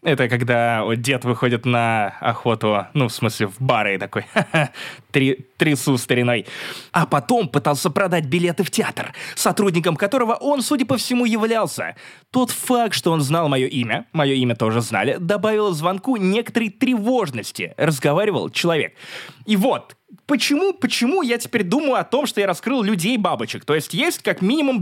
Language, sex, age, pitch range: Russian, male, 20-39, 140-225 Hz